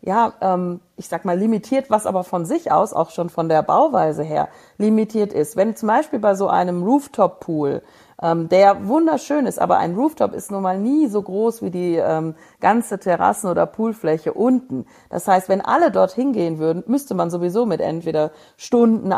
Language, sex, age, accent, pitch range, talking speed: German, female, 40-59, German, 165-230 Hz, 180 wpm